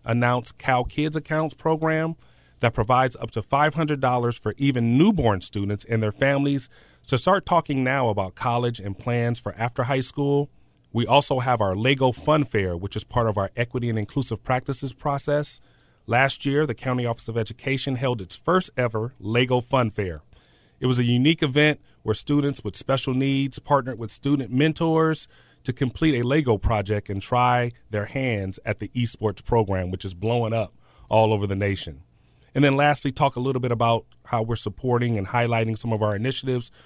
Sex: male